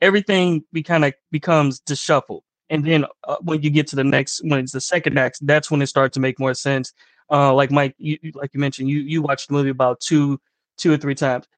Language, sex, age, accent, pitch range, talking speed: English, male, 20-39, American, 135-160 Hz, 245 wpm